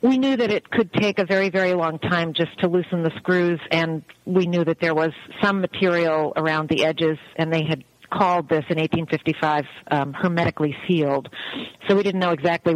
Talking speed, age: 200 wpm, 50-69